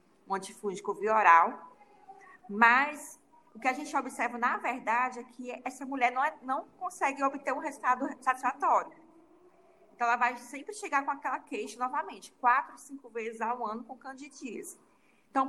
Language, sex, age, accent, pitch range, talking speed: Portuguese, female, 20-39, Brazilian, 210-270 Hz, 155 wpm